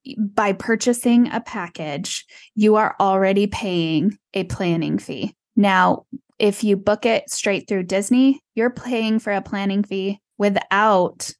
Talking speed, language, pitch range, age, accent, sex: 135 wpm, English, 180-220 Hz, 10-29, American, female